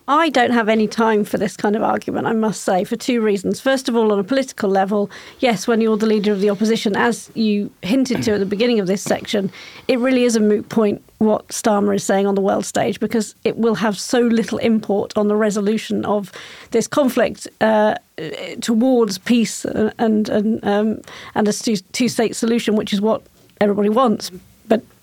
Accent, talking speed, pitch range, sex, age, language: British, 195 wpm, 210-245 Hz, female, 40-59, English